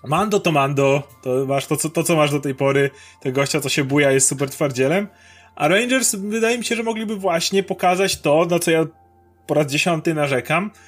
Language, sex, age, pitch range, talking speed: Polish, male, 30-49, 145-190 Hz, 210 wpm